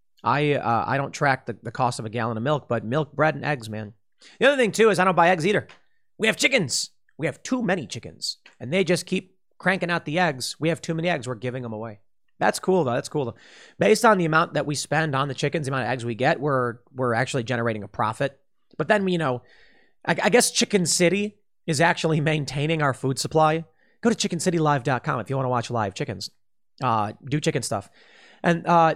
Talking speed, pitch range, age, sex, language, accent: 235 wpm, 130-180 Hz, 30-49, male, English, American